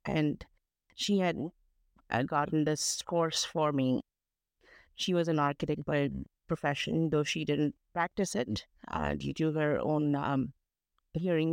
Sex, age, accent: female, 50-69, Indian